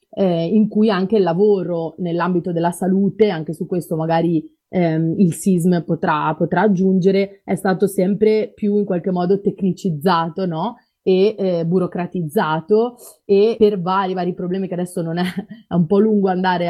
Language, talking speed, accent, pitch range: Italian, 160 wpm, native, 170-205 Hz